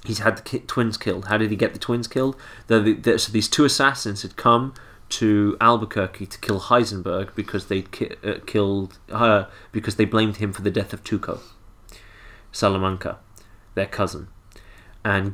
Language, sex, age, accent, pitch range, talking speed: English, male, 30-49, British, 95-110 Hz, 175 wpm